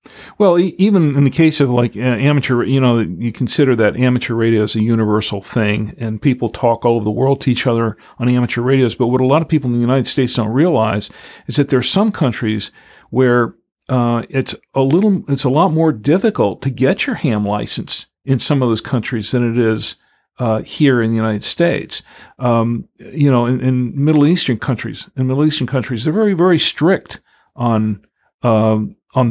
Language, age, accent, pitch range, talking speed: English, 50-69, American, 115-140 Hz, 200 wpm